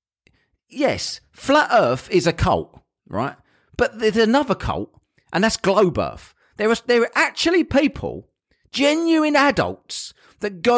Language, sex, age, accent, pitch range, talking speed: English, male, 40-59, British, 175-260 Hz, 140 wpm